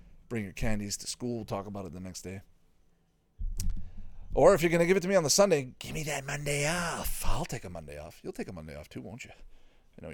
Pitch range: 90-135 Hz